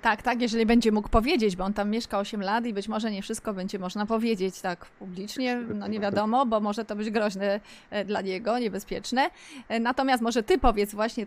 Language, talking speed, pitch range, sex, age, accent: Polish, 200 wpm, 225-300 Hz, female, 30-49, native